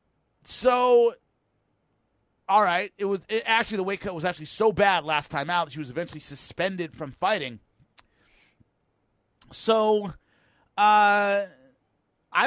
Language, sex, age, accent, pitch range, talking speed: English, male, 30-49, American, 165-220 Hz, 125 wpm